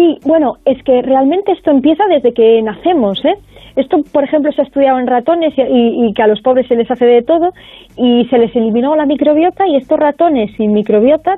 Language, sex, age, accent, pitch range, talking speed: Spanish, female, 30-49, Spanish, 225-305 Hz, 215 wpm